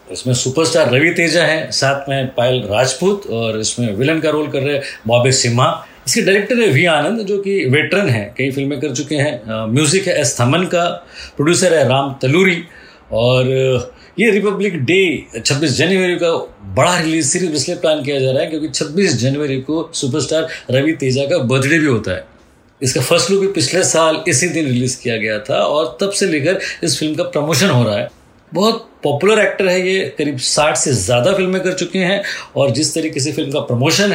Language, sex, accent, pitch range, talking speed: Hindi, male, native, 130-175 Hz, 200 wpm